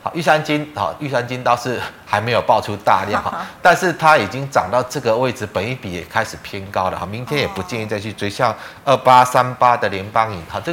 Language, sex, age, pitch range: Chinese, male, 30-49, 105-135 Hz